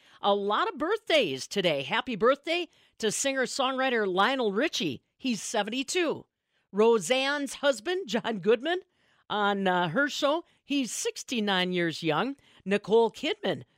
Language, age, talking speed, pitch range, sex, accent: English, 50-69, 120 wpm, 210-280 Hz, female, American